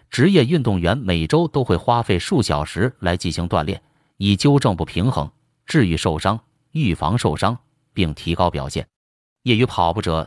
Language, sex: Chinese, male